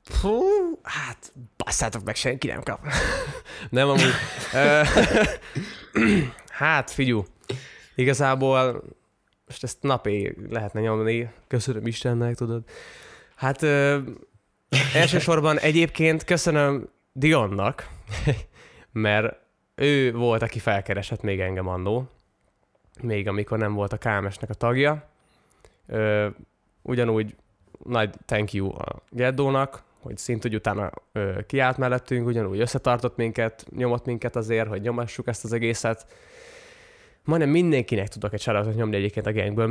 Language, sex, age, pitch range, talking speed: Hungarian, male, 20-39, 110-135 Hz, 115 wpm